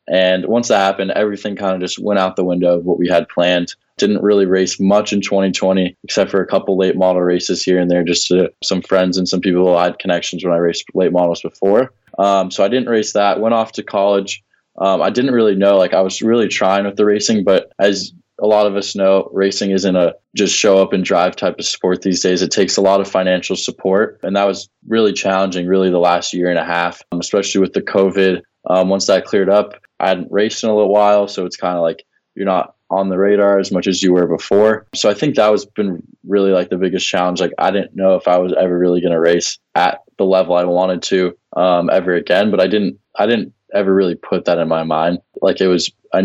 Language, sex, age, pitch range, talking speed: English, male, 20-39, 90-100 Hz, 250 wpm